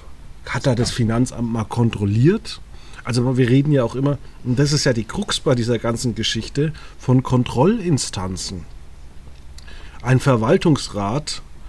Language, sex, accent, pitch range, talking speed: German, male, German, 115-150 Hz, 135 wpm